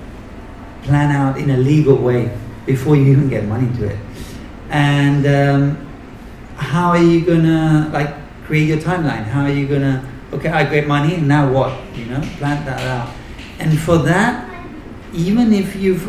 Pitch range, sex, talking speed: 130-165 Hz, male, 170 wpm